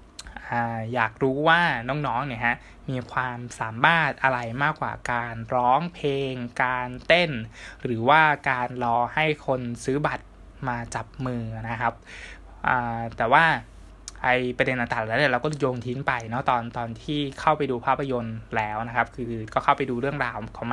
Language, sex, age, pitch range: Thai, male, 20-39, 115-140 Hz